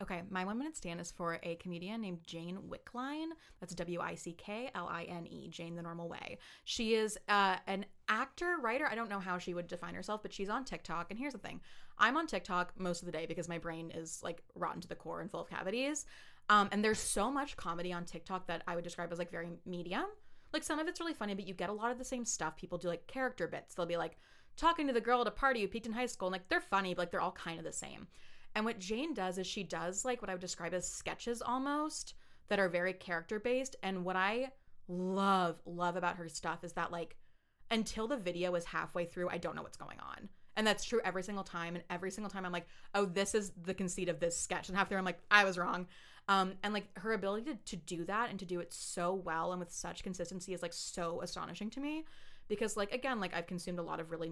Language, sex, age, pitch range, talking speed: English, female, 20-39, 175-225 Hz, 250 wpm